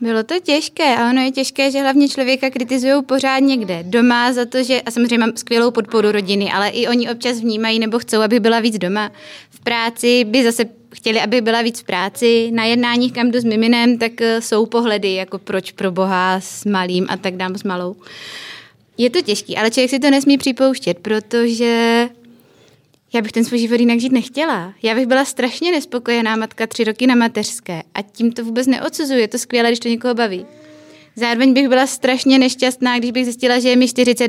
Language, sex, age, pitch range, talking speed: Czech, female, 20-39, 220-260 Hz, 200 wpm